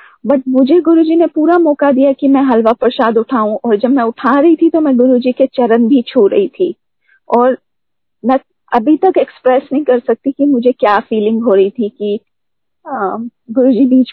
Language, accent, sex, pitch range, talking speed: Hindi, native, female, 240-285 Hz, 190 wpm